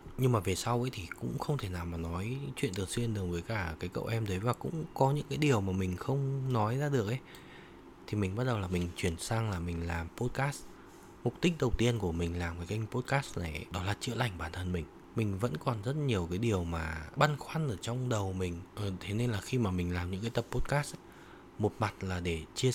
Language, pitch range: Vietnamese, 90-125 Hz